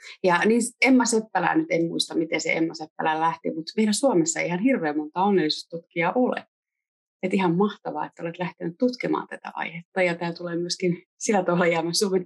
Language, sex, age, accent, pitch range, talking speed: Finnish, female, 30-49, native, 155-200 Hz, 180 wpm